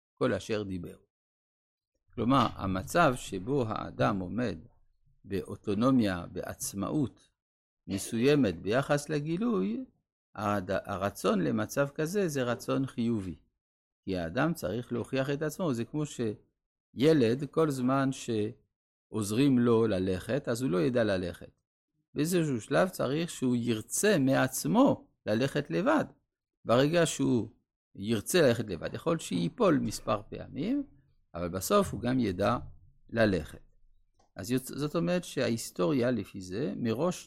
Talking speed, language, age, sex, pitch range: 110 wpm, Hebrew, 50-69, male, 100-155 Hz